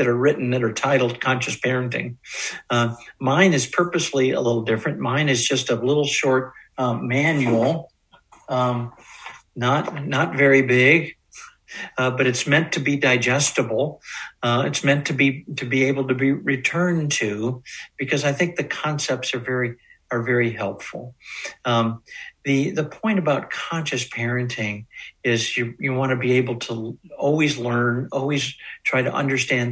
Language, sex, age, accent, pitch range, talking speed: English, male, 60-79, American, 120-145 Hz, 155 wpm